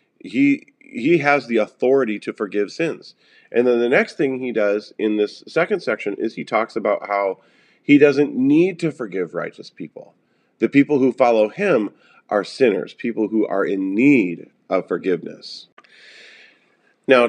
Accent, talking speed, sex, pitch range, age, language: American, 160 wpm, male, 110-175 Hz, 40-59, English